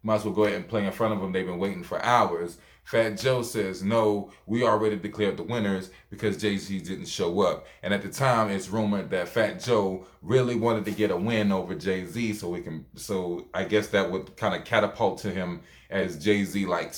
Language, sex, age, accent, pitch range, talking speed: English, male, 20-39, American, 95-110 Hz, 225 wpm